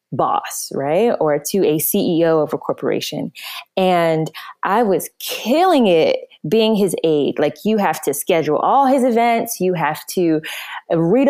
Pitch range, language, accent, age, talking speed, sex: 175-235 Hz, English, American, 20-39, 155 wpm, female